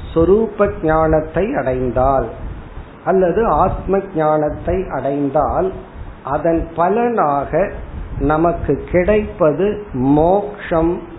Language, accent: Tamil, native